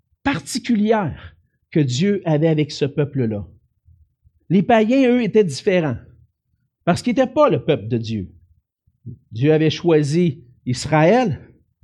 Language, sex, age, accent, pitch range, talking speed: French, male, 50-69, Canadian, 120-190 Hz, 120 wpm